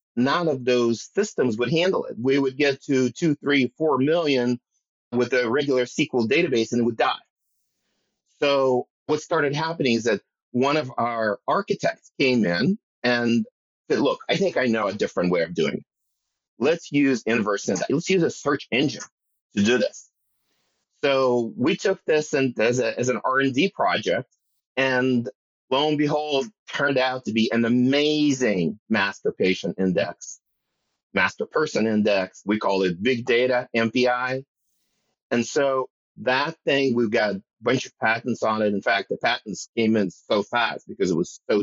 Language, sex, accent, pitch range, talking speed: English, male, American, 115-145 Hz, 175 wpm